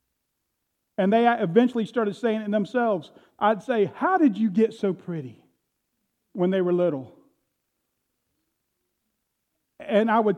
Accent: American